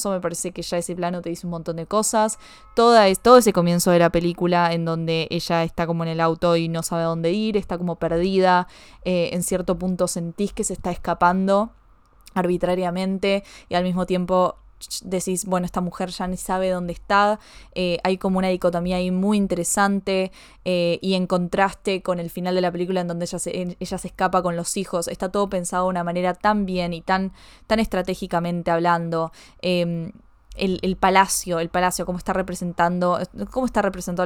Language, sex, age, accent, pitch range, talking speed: Spanish, female, 20-39, Argentinian, 175-190 Hz, 195 wpm